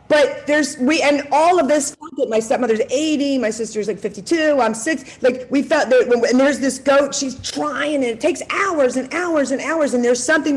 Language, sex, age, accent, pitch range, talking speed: English, female, 40-59, American, 245-290 Hz, 210 wpm